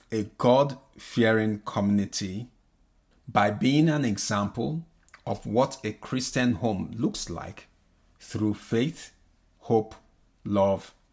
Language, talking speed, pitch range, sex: English, 95 wpm, 100-125 Hz, male